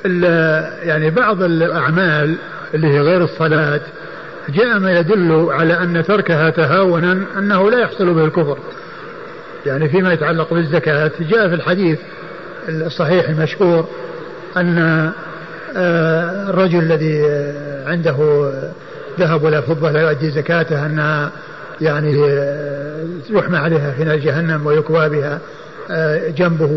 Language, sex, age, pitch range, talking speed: Arabic, male, 50-69, 160-185 Hz, 105 wpm